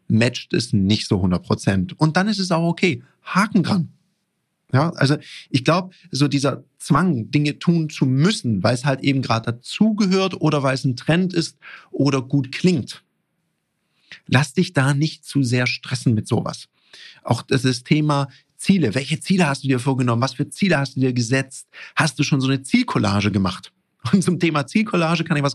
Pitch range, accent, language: 120-160 Hz, German, German